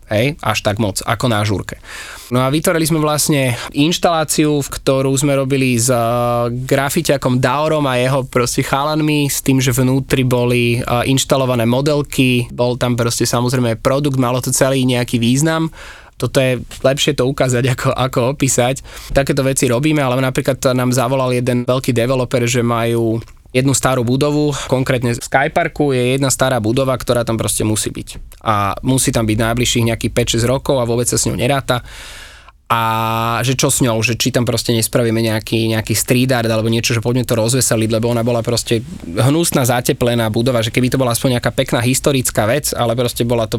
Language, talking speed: Slovak, 180 wpm